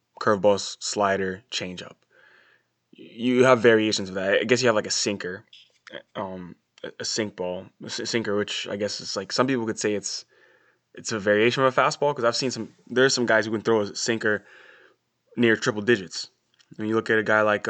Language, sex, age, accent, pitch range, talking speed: English, male, 20-39, American, 100-115 Hz, 210 wpm